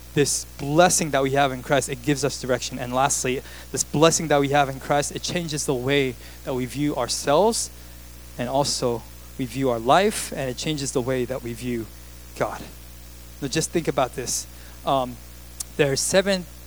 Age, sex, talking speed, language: 20-39, male, 185 wpm, English